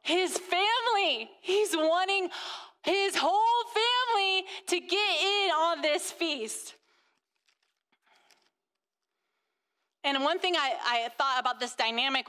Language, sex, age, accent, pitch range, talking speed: English, female, 30-49, American, 235-315 Hz, 105 wpm